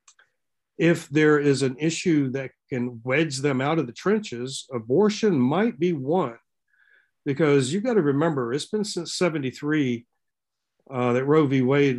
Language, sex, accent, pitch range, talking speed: English, male, American, 125-160 Hz, 155 wpm